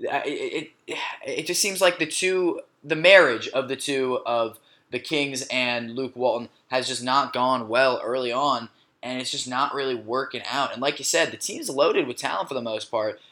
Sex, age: male, 10-29